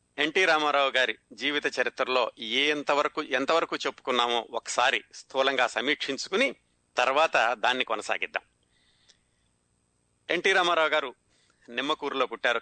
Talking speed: 90 wpm